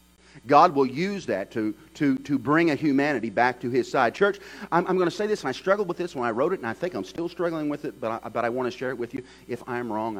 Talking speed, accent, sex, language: 290 wpm, American, male, English